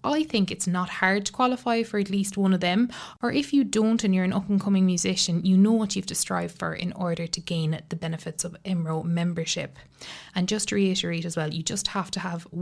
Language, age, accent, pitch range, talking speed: English, 20-39, Irish, 160-190 Hz, 235 wpm